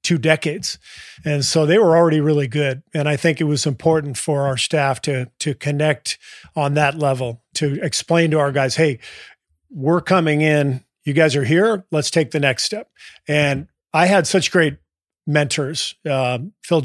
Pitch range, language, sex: 135-160 Hz, English, male